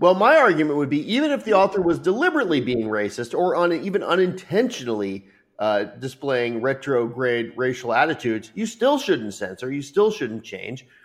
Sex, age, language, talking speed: male, 30-49, English, 170 wpm